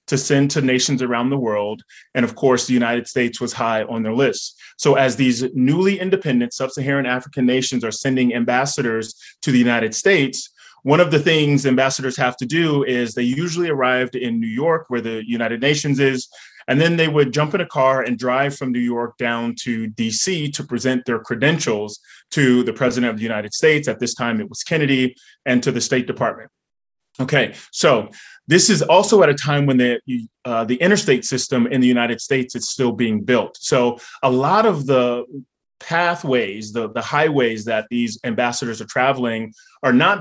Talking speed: 190 wpm